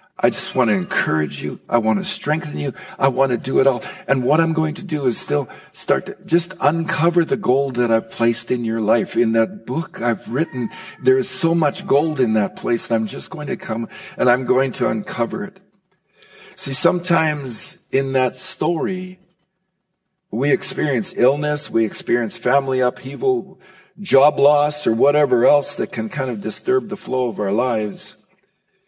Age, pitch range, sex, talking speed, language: 60-79, 135-185 Hz, male, 185 wpm, English